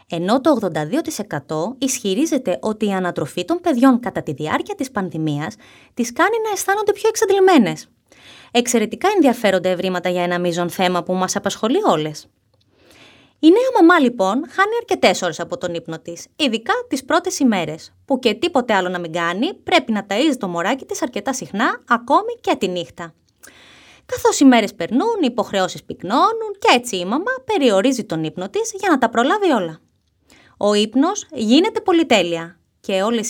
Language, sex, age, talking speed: Greek, female, 20-39, 165 wpm